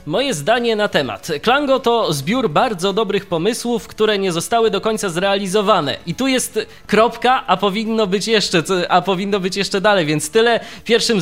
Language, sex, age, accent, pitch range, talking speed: Polish, male, 20-39, native, 165-215 Hz, 170 wpm